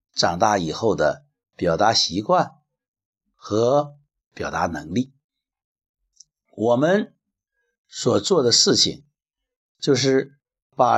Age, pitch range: 60-79, 130-210 Hz